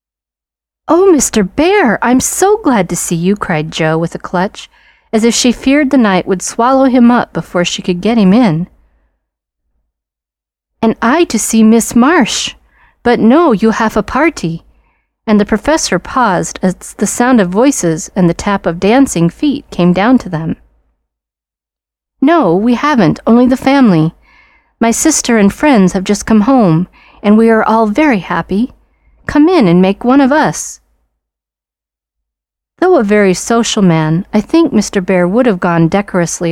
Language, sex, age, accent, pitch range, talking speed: English, female, 50-69, American, 160-240 Hz, 165 wpm